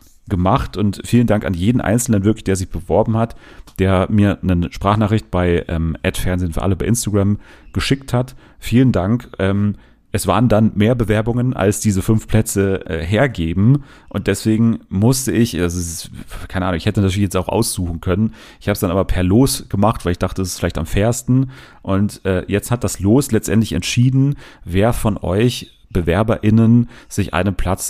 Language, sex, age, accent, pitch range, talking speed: German, male, 40-59, German, 90-115 Hz, 180 wpm